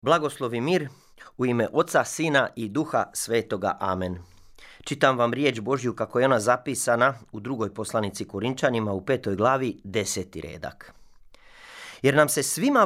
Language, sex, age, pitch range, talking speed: Croatian, male, 30-49, 105-140 Hz, 145 wpm